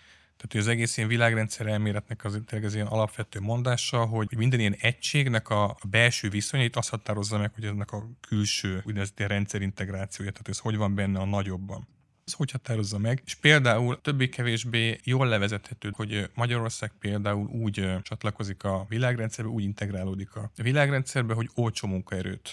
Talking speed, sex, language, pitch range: 150 wpm, male, Hungarian, 100-115 Hz